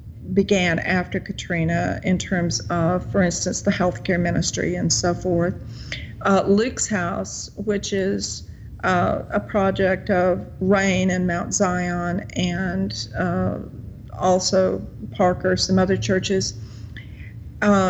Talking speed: 115 wpm